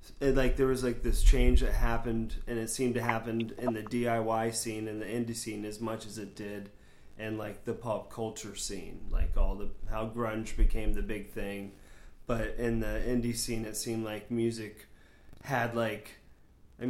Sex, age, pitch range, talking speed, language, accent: male, 30-49, 110-125 Hz, 190 wpm, English, American